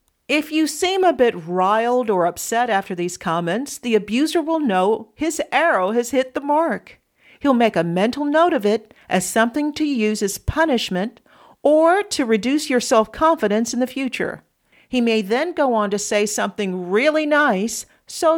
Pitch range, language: 205-290 Hz, English